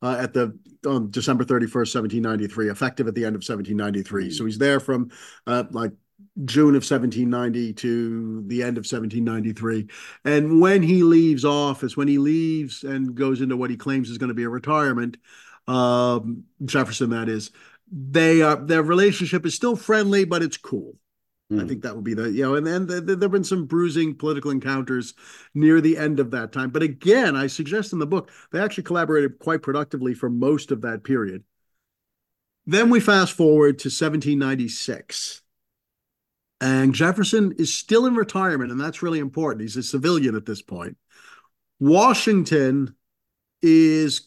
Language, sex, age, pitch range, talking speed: English, male, 50-69, 125-160 Hz, 180 wpm